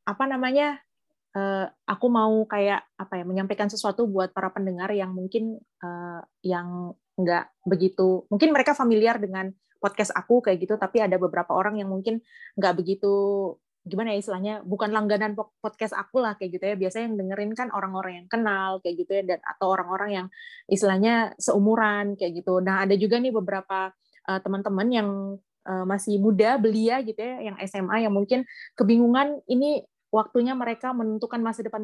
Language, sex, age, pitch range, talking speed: Indonesian, female, 20-39, 190-225 Hz, 155 wpm